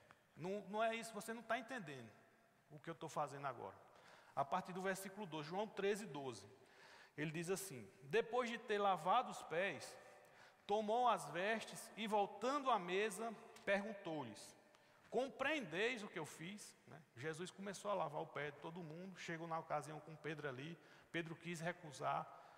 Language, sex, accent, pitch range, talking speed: Portuguese, male, Brazilian, 160-225 Hz, 165 wpm